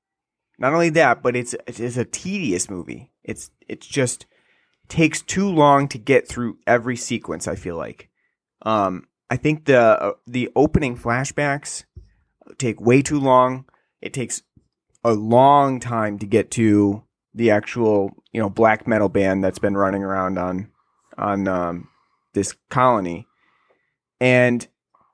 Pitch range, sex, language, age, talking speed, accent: 105-130 Hz, male, English, 30-49, 145 wpm, American